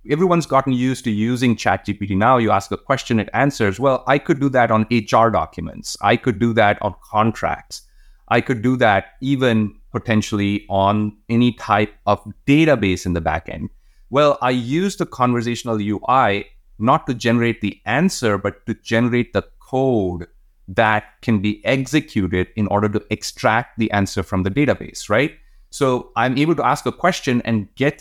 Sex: male